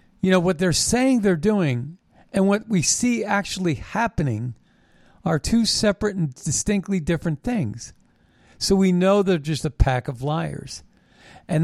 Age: 50-69